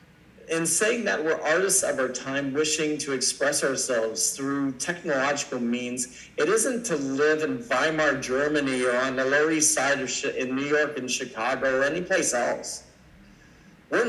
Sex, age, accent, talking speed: male, 40-59, American, 165 wpm